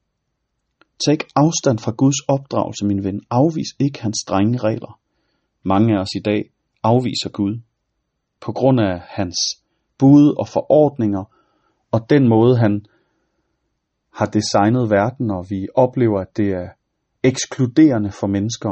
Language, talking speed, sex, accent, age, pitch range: Danish, 135 wpm, male, native, 30-49, 100-130 Hz